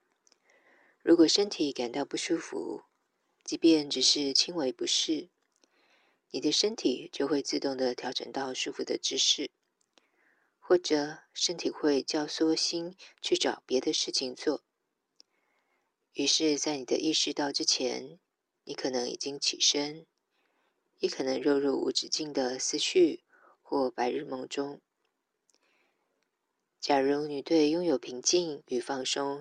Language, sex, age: Chinese, female, 20-39